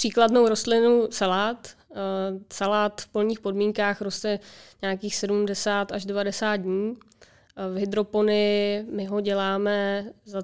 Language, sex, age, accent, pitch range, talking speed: Czech, female, 20-39, native, 195-215 Hz, 110 wpm